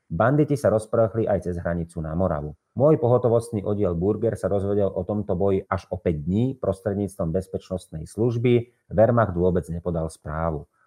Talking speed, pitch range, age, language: 155 wpm, 90-110 Hz, 30-49, Slovak